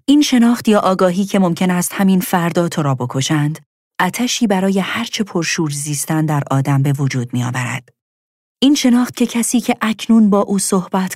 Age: 40-59